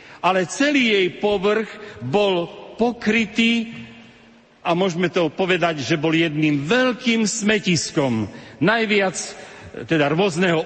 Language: Slovak